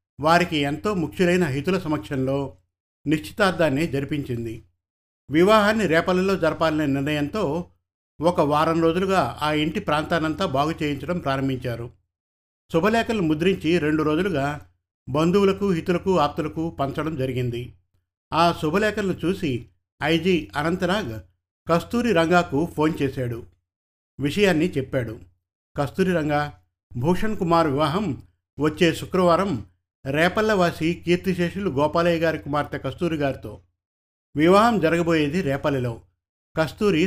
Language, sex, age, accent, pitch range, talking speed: Telugu, male, 60-79, native, 120-175 Hz, 95 wpm